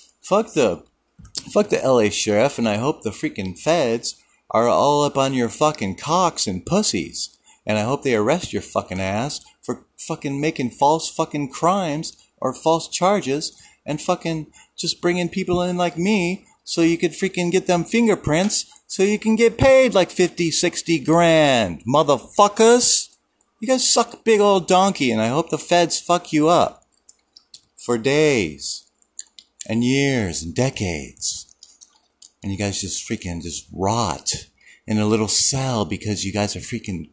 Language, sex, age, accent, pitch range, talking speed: English, male, 30-49, American, 110-180 Hz, 160 wpm